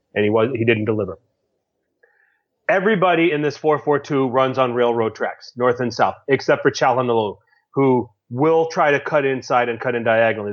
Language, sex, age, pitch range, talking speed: English, male, 30-49, 125-155 Hz, 170 wpm